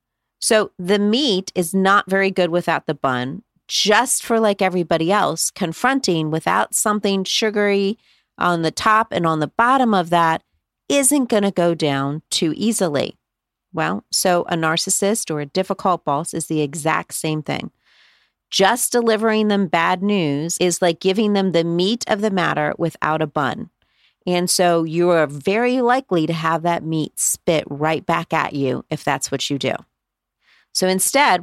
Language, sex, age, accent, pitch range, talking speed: English, female, 40-59, American, 160-205 Hz, 165 wpm